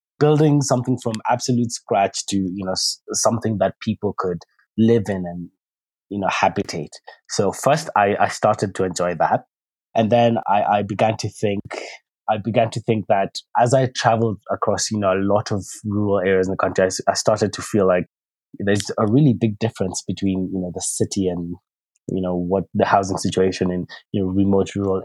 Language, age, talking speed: English, 20-39, 190 wpm